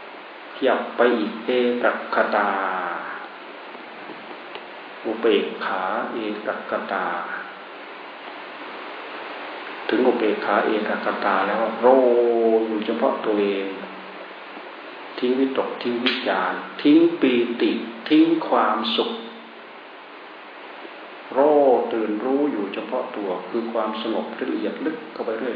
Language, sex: Thai, male